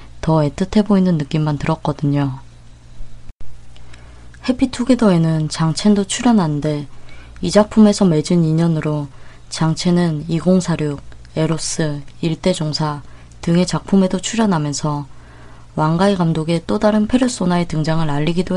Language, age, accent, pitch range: Korean, 20-39, native, 145-185 Hz